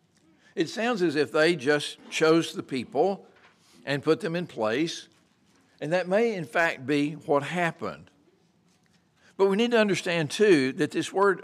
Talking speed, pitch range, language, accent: 165 wpm, 135-175 Hz, English, American